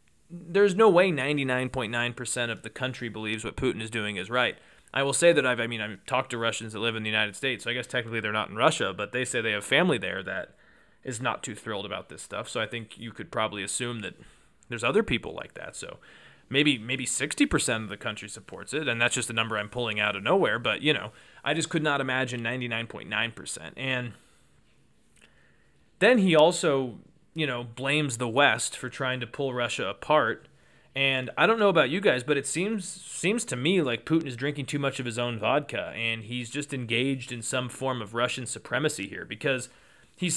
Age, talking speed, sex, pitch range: 20-39, 215 wpm, male, 115-145 Hz